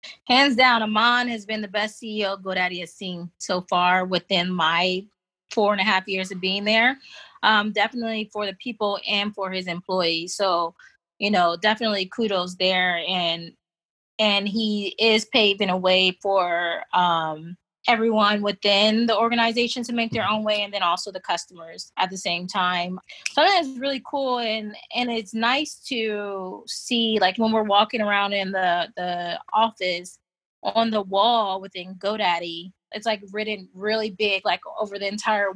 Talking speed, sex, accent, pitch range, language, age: 165 wpm, female, American, 180-220 Hz, English, 20-39